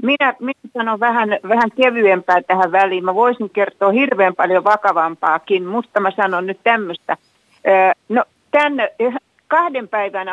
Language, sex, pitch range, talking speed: Finnish, female, 185-255 Hz, 135 wpm